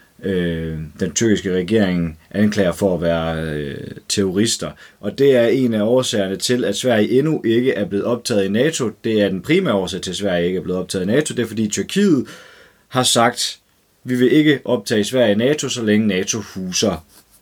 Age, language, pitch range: 30-49, Danish, 95-125 Hz